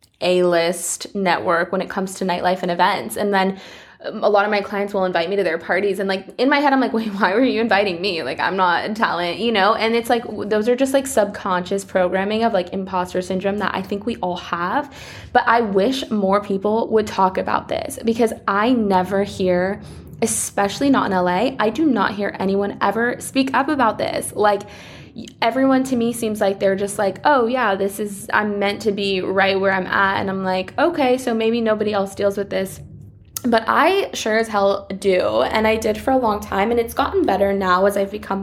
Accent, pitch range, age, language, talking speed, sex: American, 195-230 Hz, 20-39, English, 220 wpm, female